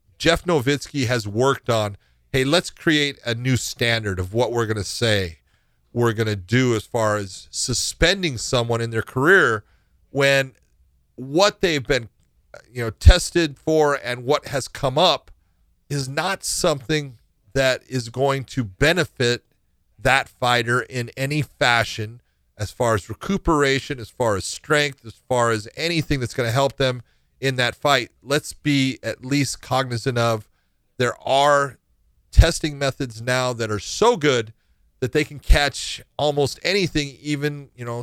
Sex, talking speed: male, 155 wpm